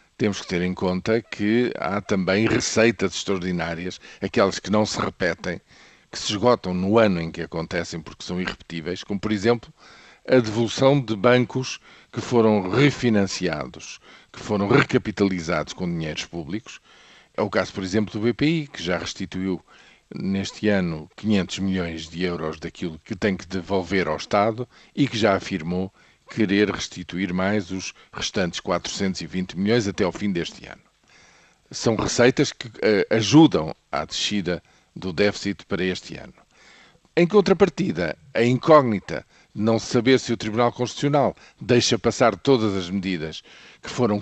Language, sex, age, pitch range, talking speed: Portuguese, male, 50-69, 95-120 Hz, 150 wpm